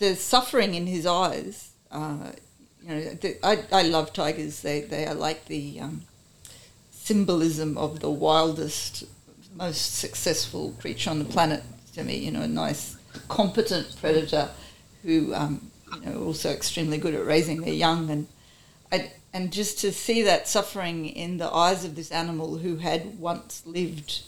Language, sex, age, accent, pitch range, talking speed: English, female, 40-59, Australian, 155-185 Hz, 165 wpm